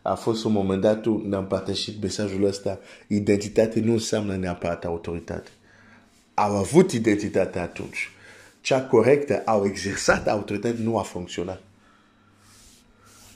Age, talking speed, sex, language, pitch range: 50-69, 115 wpm, male, Romanian, 95-115 Hz